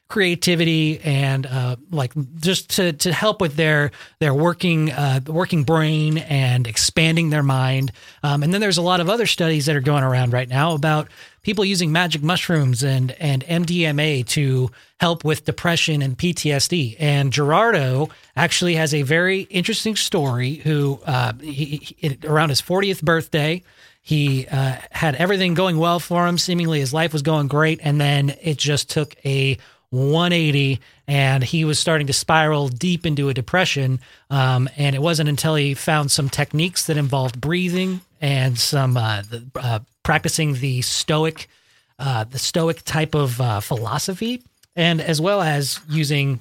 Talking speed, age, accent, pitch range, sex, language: 165 wpm, 30-49, American, 135-165 Hz, male, English